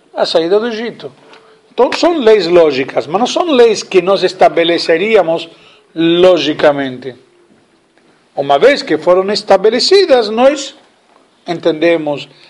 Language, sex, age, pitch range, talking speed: Portuguese, male, 50-69, 165-245 Hz, 110 wpm